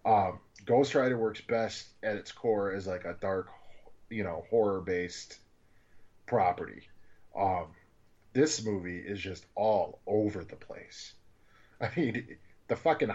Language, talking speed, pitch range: English, 130 wpm, 95-130 Hz